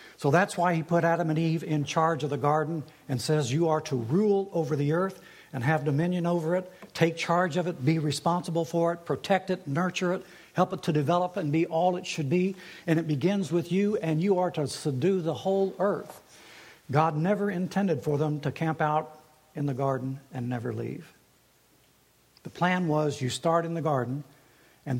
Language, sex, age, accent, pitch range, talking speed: English, male, 60-79, American, 140-175 Hz, 205 wpm